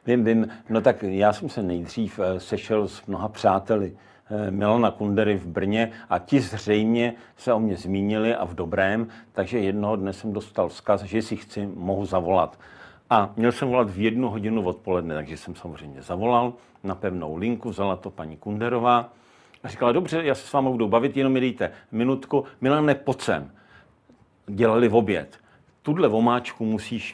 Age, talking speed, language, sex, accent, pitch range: 50-69, 170 wpm, Czech, male, native, 95-115 Hz